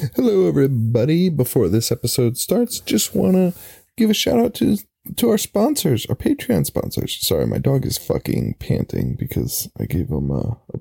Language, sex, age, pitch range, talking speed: English, male, 20-39, 105-155 Hz, 180 wpm